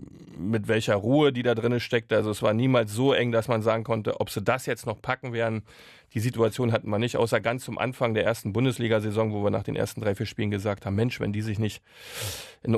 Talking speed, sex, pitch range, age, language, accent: 245 wpm, male, 110-125 Hz, 40-59, German, German